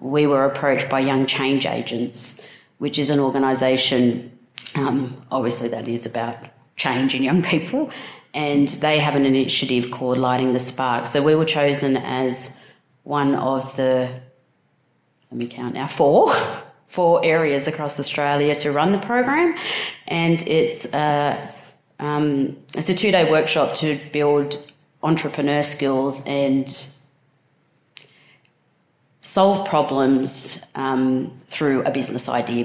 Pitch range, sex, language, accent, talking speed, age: 130-150 Hz, female, English, Australian, 130 wpm, 30-49